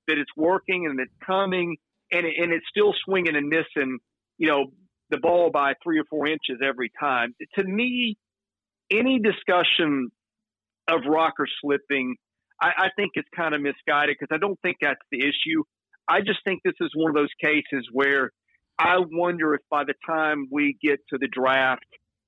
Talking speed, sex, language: 170 wpm, male, English